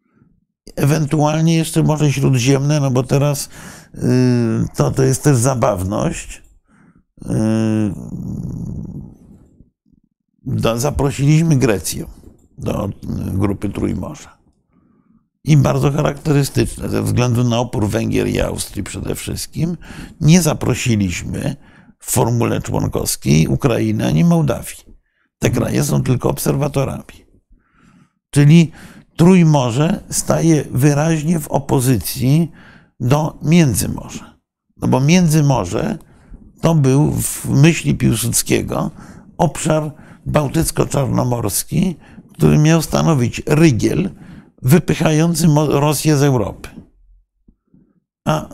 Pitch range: 125-160 Hz